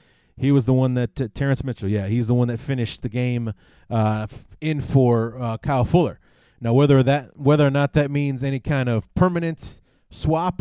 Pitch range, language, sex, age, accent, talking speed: 110-140 Hz, English, male, 30-49, American, 205 wpm